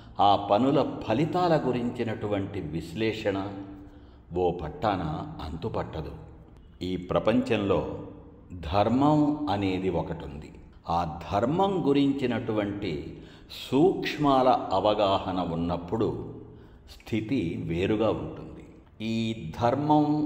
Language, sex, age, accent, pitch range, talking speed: Telugu, male, 60-79, native, 90-125 Hz, 75 wpm